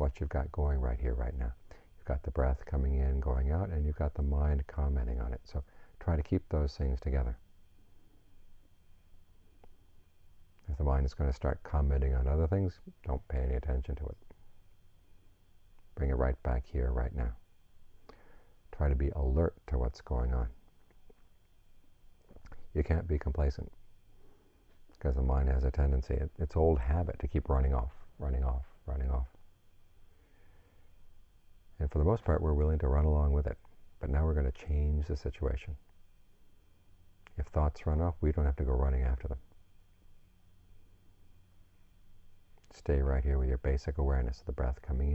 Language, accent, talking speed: English, American, 170 wpm